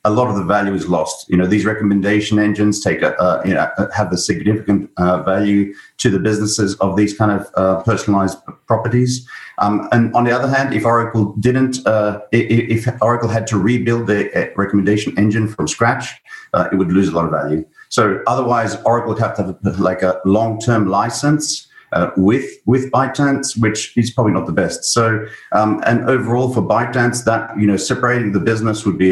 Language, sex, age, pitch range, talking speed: English, male, 50-69, 105-125 Hz, 200 wpm